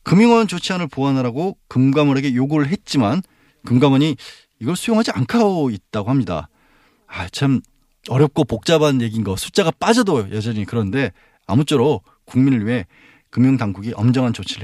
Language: Korean